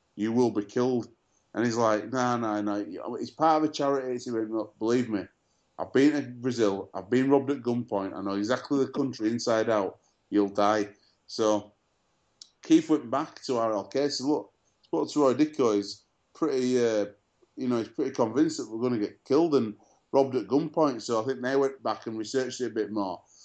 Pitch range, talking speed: 105-125 Hz, 180 wpm